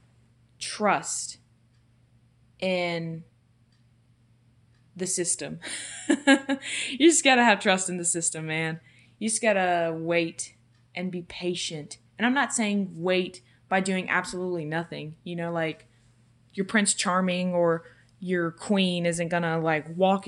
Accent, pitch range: American, 125-195 Hz